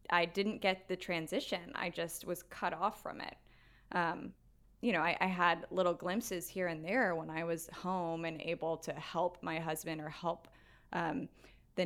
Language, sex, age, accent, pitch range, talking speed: English, female, 10-29, American, 165-200 Hz, 185 wpm